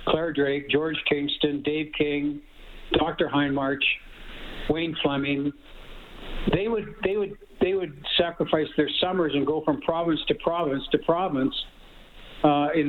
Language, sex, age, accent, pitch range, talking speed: English, male, 60-79, American, 145-170 Hz, 130 wpm